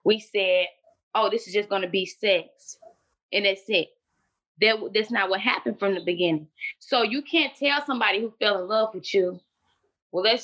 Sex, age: female, 20-39